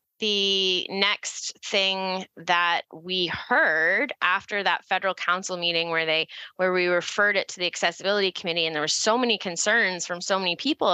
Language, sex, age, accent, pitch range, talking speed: English, female, 20-39, American, 180-215 Hz, 170 wpm